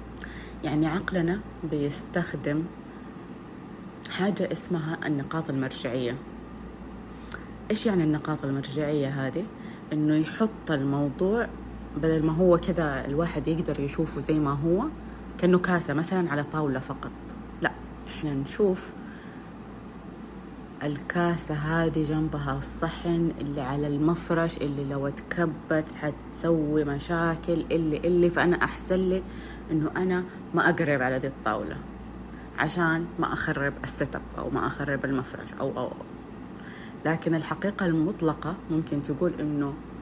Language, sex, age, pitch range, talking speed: Arabic, female, 30-49, 150-180 Hz, 115 wpm